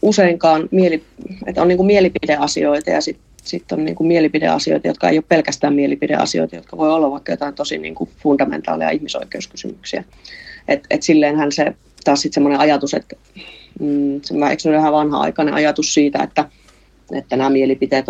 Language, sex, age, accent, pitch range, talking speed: Finnish, female, 30-49, native, 140-175 Hz, 145 wpm